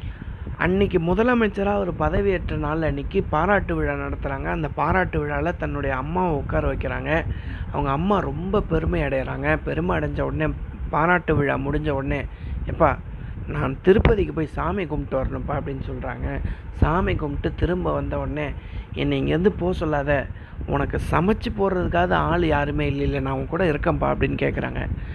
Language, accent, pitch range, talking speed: Tamil, native, 130-180 Hz, 135 wpm